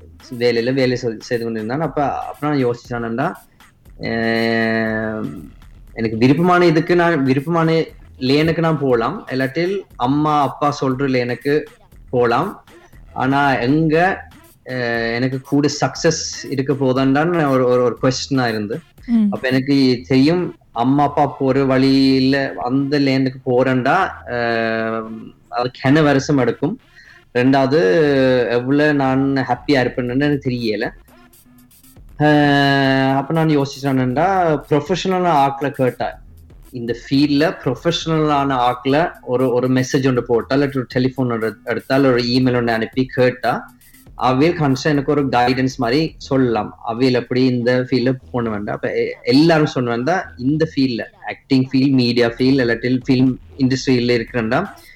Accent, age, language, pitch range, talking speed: native, 20-39, Tamil, 120-145 Hz, 95 wpm